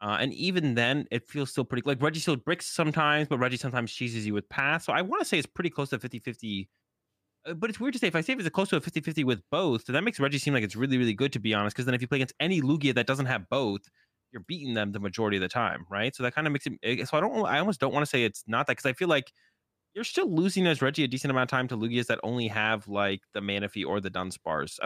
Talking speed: 295 wpm